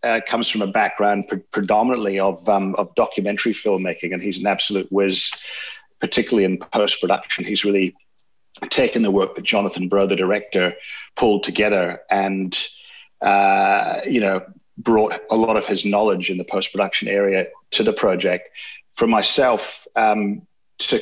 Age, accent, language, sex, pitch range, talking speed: 40-59, British, English, male, 100-110 Hz, 150 wpm